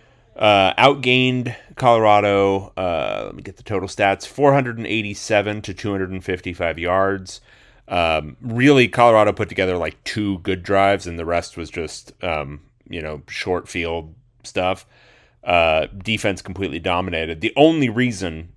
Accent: American